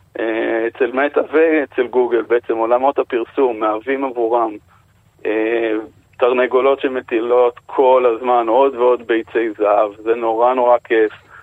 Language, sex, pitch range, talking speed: Hebrew, male, 115-150 Hz, 115 wpm